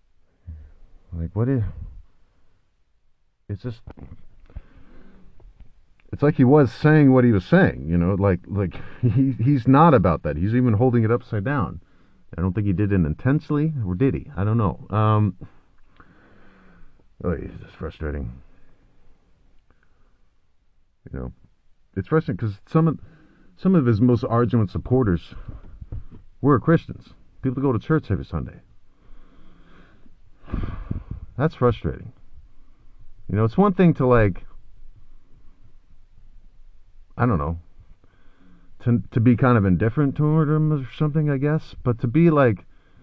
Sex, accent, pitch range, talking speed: male, American, 90-135 Hz, 135 wpm